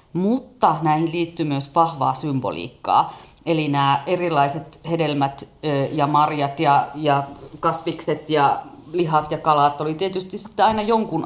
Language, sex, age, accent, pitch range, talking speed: Finnish, female, 30-49, native, 150-190 Hz, 130 wpm